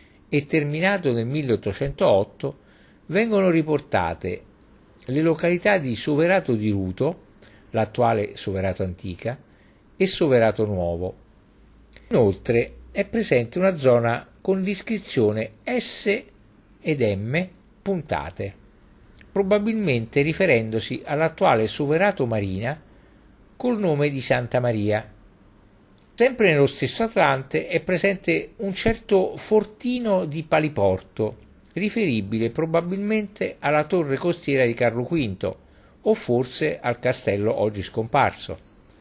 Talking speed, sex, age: 100 wpm, male, 50-69